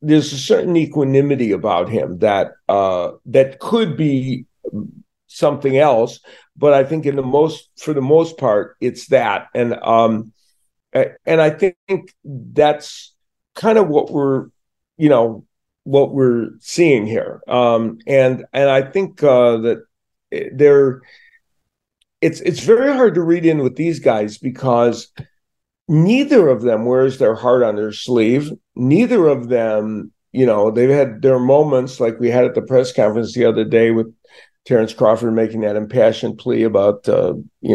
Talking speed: 155 wpm